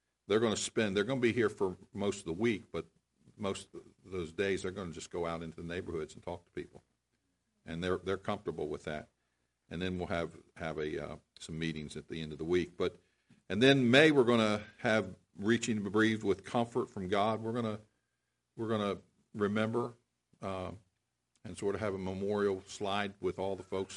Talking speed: 220 wpm